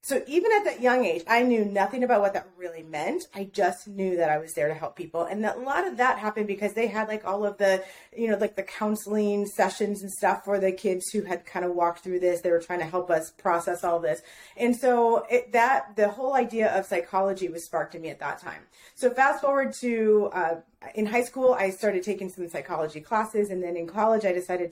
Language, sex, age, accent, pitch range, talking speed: English, female, 30-49, American, 180-235 Hz, 240 wpm